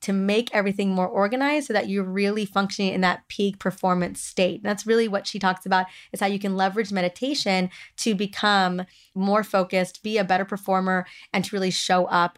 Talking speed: 195 wpm